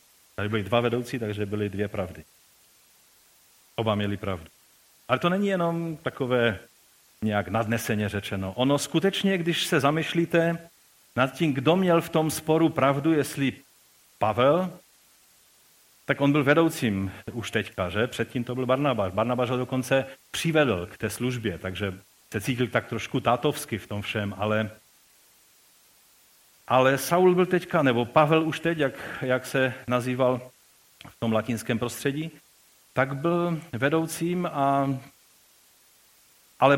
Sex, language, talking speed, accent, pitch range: male, Czech, 130 wpm, native, 110-145 Hz